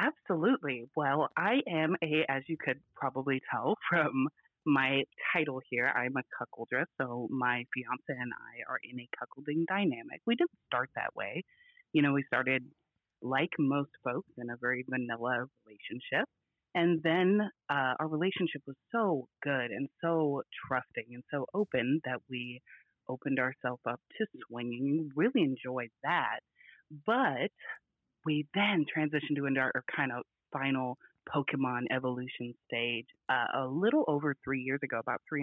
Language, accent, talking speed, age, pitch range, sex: English, American, 155 wpm, 30-49, 125-155 Hz, female